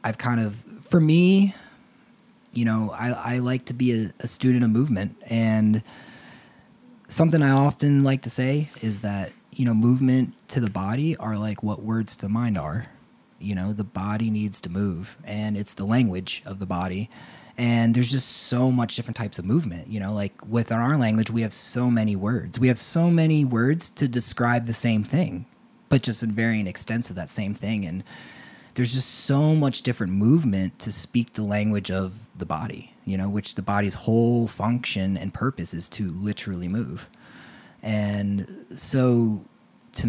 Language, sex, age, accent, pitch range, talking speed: English, male, 20-39, American, 105-135 Hz, 185 wpm